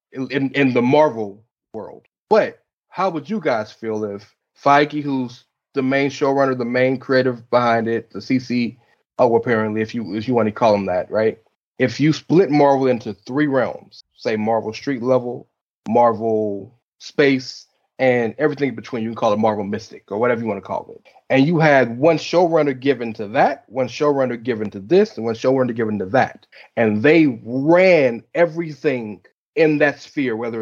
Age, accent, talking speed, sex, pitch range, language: 30-49, American, 180 wpm, male, 120-145 Hz, English